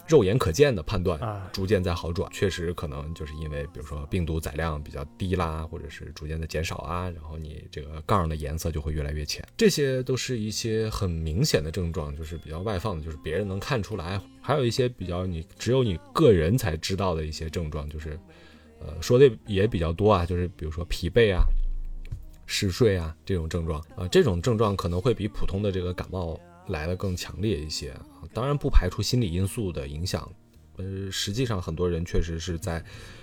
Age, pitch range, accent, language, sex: 20-39, 80-100 Hz, native, Chinese, male